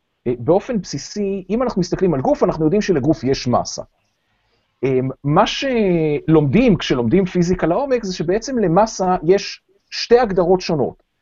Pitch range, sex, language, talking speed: 155-245 Hz, male, Hebrew, 130 wpm